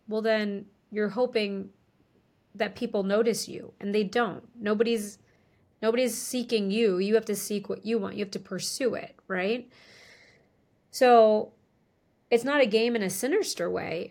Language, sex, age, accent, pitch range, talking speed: English, female, 30-49, American, 195-225 Hz, 155 wpm